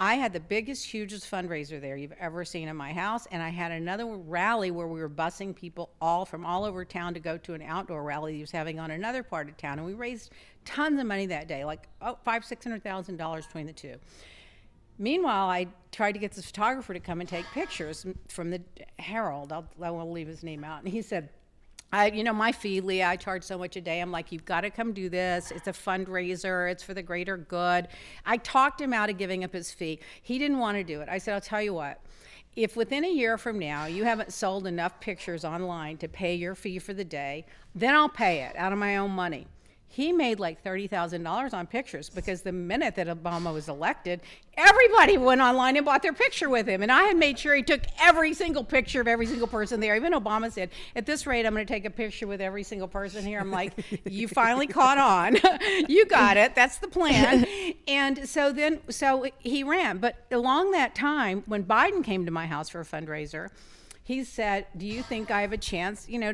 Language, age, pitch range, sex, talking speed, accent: English, 50-69, 175-240 Hz, female, 230 wpm, American